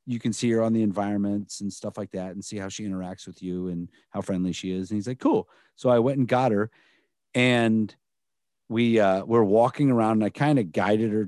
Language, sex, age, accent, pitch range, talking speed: English, male, 50-69, American, 105-140 Hz, 240 wpm